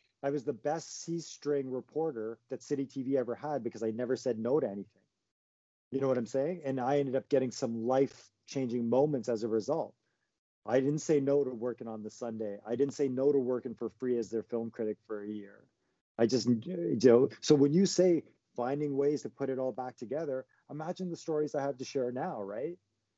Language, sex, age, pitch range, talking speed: English, male, 40-59, 115-145 Hz, 215 wpm